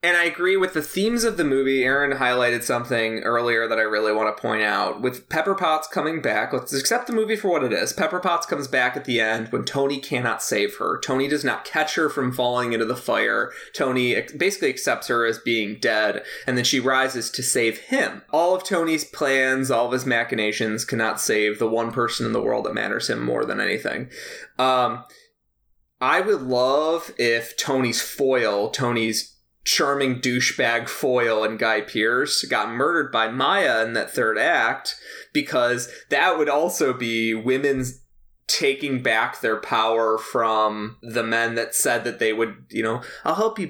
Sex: male